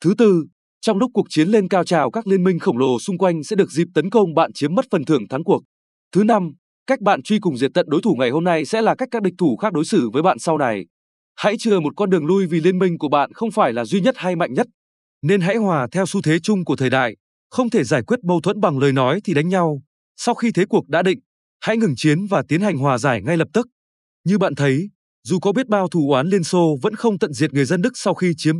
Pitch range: 150-205 Hz